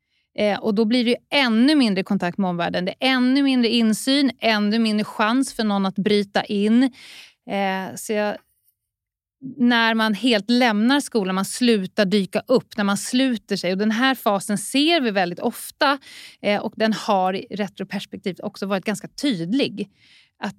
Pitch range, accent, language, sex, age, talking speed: 200-250 Hz, Swedish, English, female, 30-49, 160 wpm